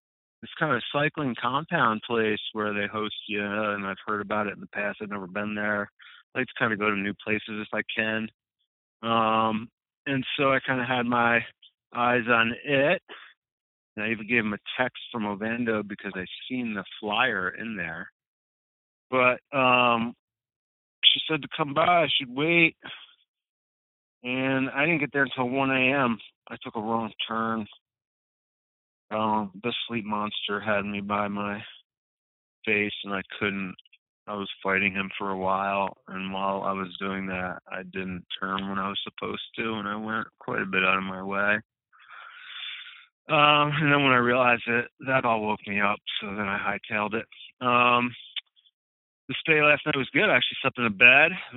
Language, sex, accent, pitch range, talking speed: English, male, American, 100-125 Hz, 185 wpm